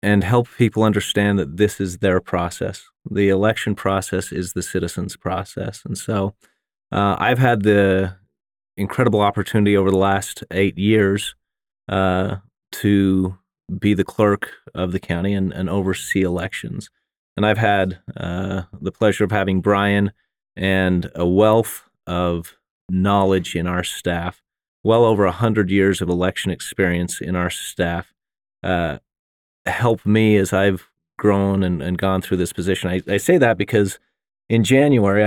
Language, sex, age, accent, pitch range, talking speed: English, male, 30-49, American, 95-105 Hz, 150 wpm